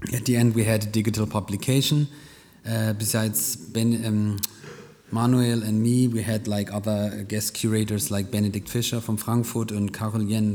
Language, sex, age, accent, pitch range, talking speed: German, male, 30-49, German, 105-120 Hz, 160 wpm